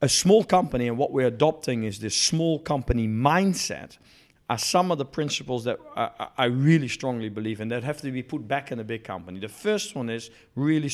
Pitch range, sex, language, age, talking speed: 115-160 Hz, male, English, 50-69, 215 wpm